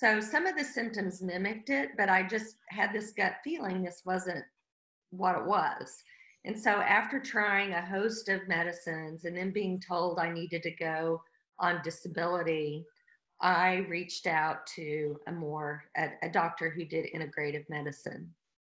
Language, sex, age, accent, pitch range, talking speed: English, female, 40-59, American, 165-200 Hz, 160 wpm